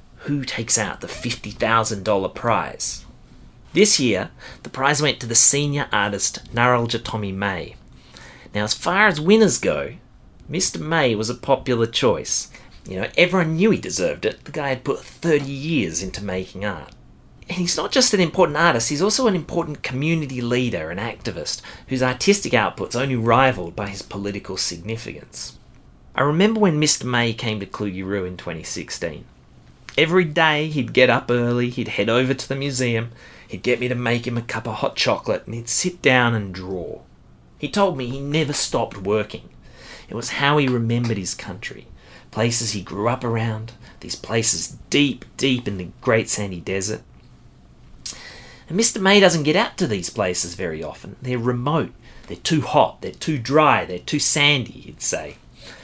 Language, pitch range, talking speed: English, 105-150 Hz, 175 wpm